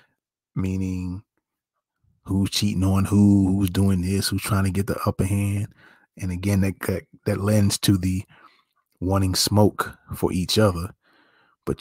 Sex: male